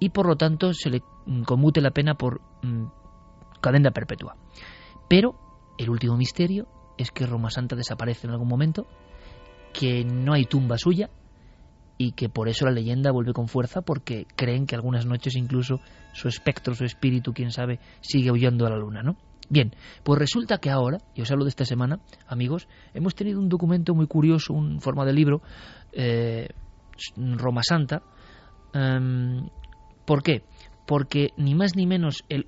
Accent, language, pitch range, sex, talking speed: Spanish, Spanish, 125-165 Hz, male, 165 wpm